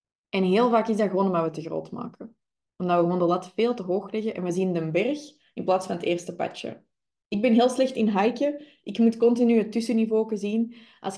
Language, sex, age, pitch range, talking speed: Dutch, female, 20-39, 175-225 Hz, 235 wpm